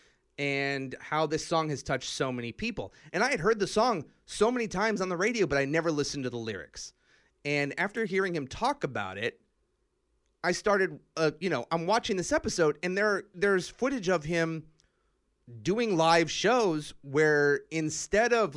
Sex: male